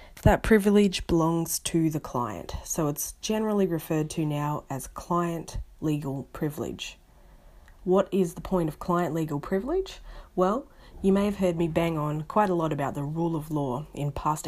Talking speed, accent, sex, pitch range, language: 165 wpm, Australian, female, 140-175 Hz, English